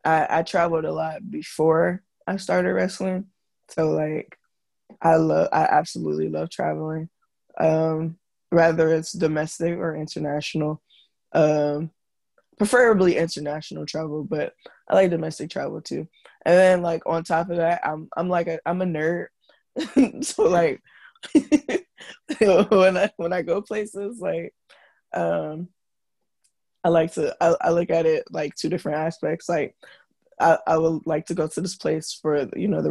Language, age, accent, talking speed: English, 20-39, American, 150 wpm